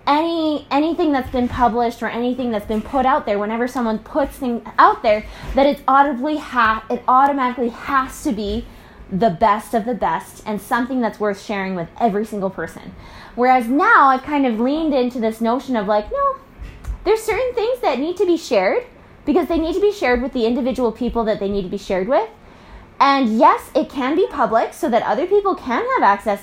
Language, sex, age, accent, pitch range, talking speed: English, female, 20-39, American, 225-330 Hz, 205 wpm